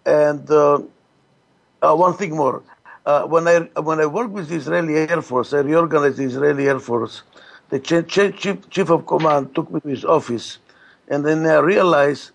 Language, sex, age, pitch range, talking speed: English, male, 60-79, 150-195 Hz, 185 wpm